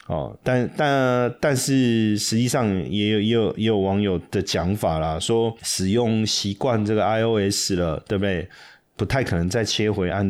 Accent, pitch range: native, 90-115 Hz